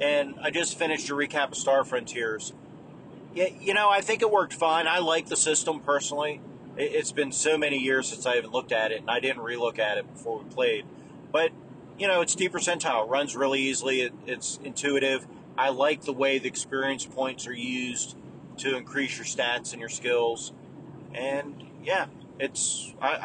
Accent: American